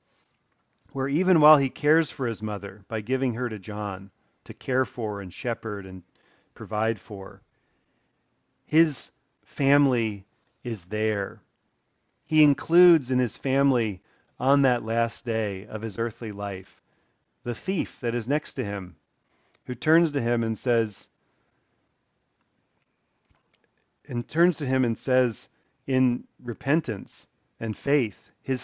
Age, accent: 40-59, American